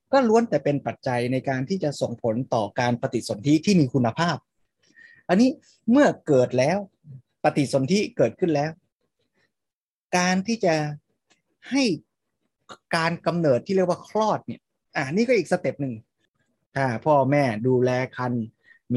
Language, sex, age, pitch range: Thai, male, 20-39, 120-170 Hz